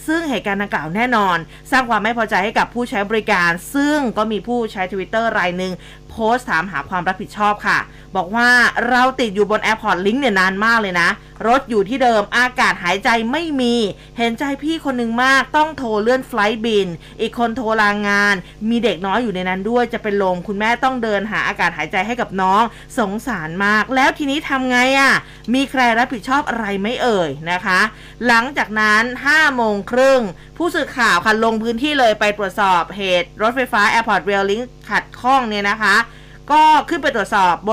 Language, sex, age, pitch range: Thai, female, 20-39, 195-245 Hz